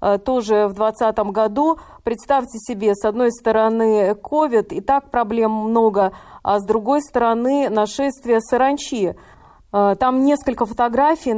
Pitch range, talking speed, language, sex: 220-265 Hz, 120 wpm, Russian, female